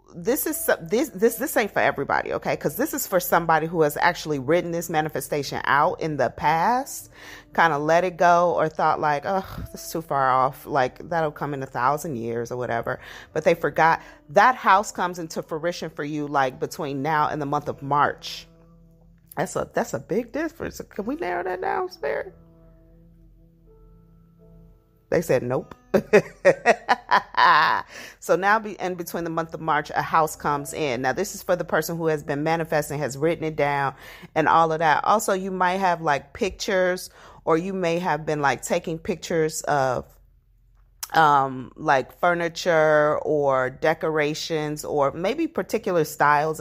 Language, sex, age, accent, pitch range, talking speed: English, female, 30-49, American, 145-180 Hz, 170 wpm